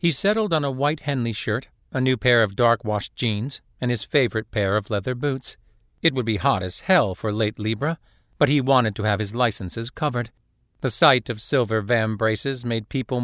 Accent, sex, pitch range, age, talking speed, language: American, male, 110-130 Hz, 50-69, 205 wpm, English